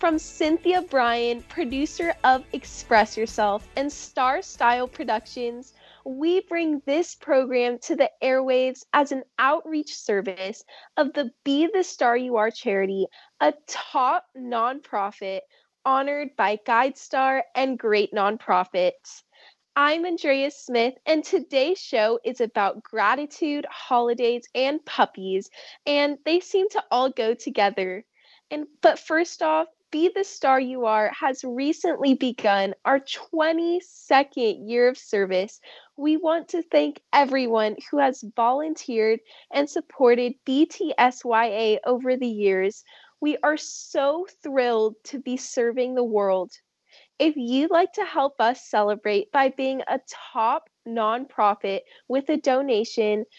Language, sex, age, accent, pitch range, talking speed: English, female, 10-29, American, 230-305 Hz, 125 wpm